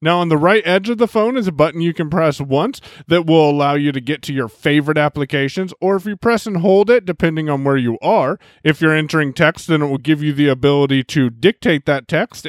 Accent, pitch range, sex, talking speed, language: American, 135-195 Hz, male, 250 wpm, English